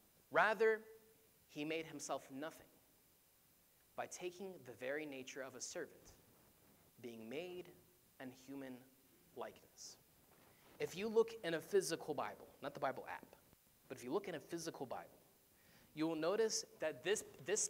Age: 20-39